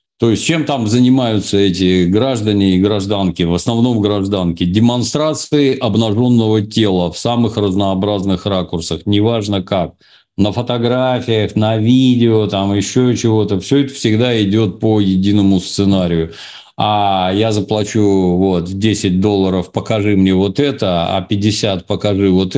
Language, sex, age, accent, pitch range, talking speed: Russian, male, 50-69, native, 95-120 Hz, 130 wpm